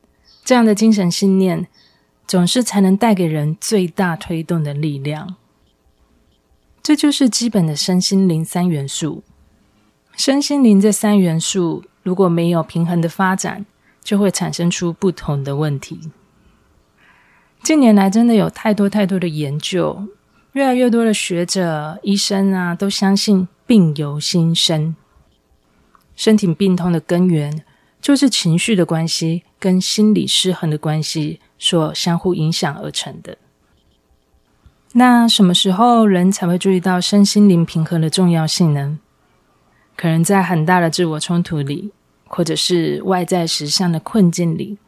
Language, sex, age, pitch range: Chinese, female, 30-49, 165-200 Hz